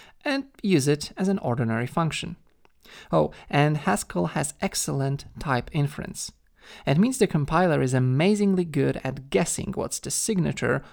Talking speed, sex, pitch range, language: 145 wpm, male, 125-170 Hz, English